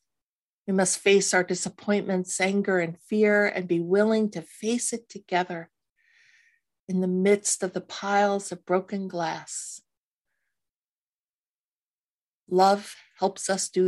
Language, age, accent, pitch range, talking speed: English, 50-69, American, 175-205 Hz, 120 wpm